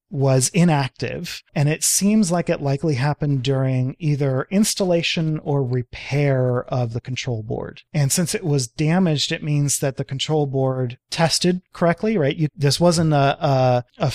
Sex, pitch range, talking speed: male, 125-155 Hz, 160 wpm